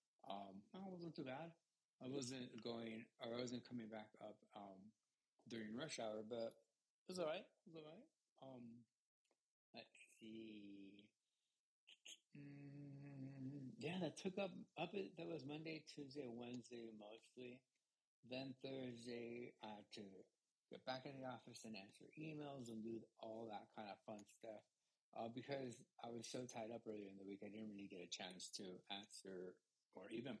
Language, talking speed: English, 170 wpm